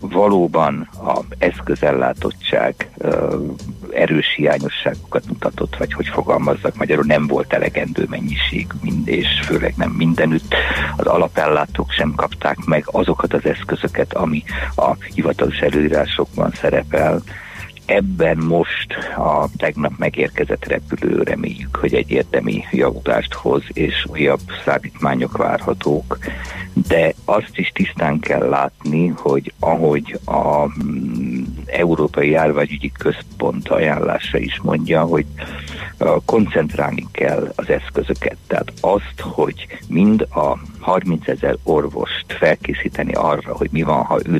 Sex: male